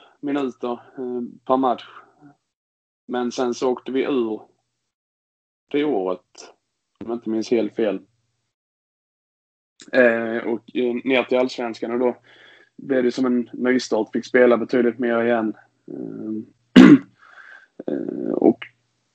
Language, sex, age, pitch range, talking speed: Swedish, male, 20-39, 115-125 Hz, 105 wpm